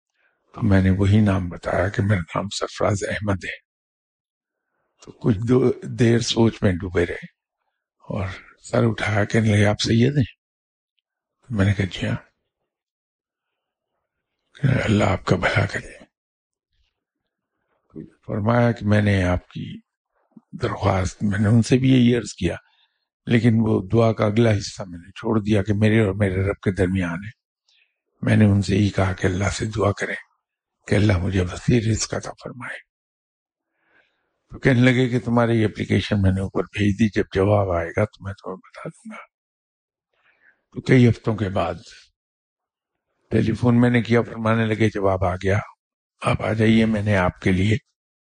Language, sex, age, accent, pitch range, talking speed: English, male, 50-69, Indian, 95-115 Hz, 125 wpm